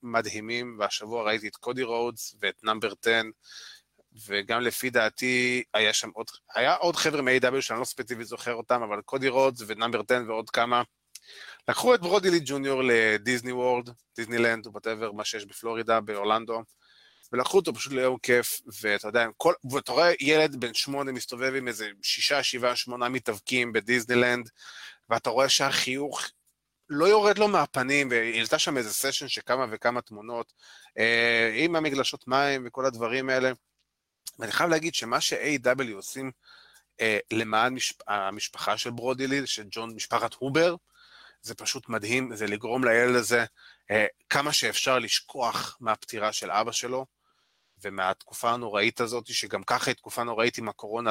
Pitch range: 115-130 Hz